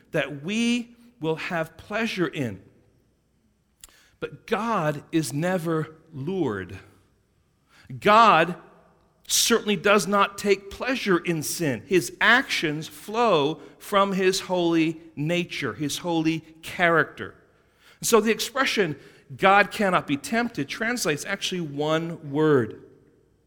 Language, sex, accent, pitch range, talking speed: English, male, American, 145-215 Hz, 100 wpm